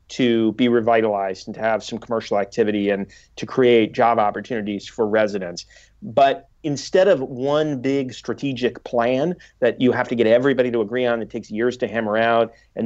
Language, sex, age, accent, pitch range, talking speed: English, male, 40-59, American, 110-130 Hz, 180 wpm